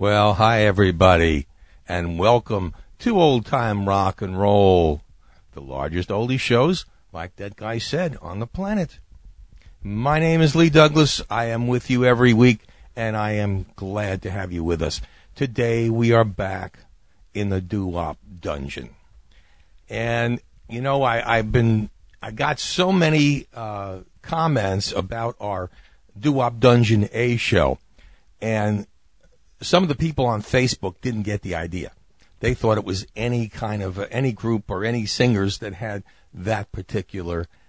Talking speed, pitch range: 150 wpm, 90-125 Hz